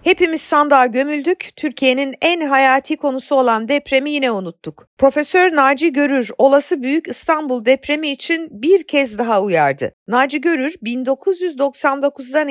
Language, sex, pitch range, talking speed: Turkish, female, 230-295 Hz, 125 wpm